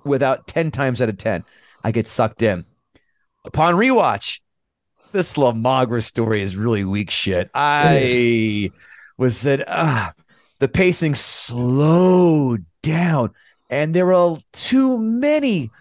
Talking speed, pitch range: 120 wpm, 115-165 Hz